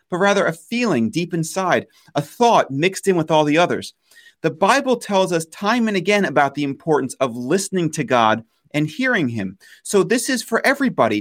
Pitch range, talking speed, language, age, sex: 145-200 Hz, 195 wpm, English, 30-49, male